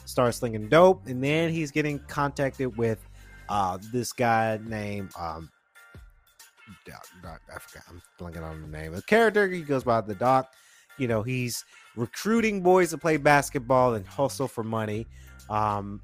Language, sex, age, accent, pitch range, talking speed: English, male, 30-49, American, 110-155 Hz, 155 wpm